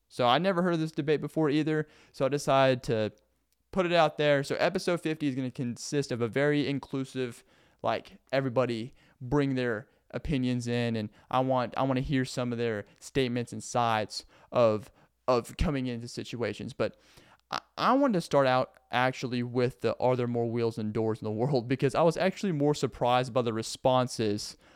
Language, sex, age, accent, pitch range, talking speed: English, male, 20-39, American, 120-150 Hz, 195 wpm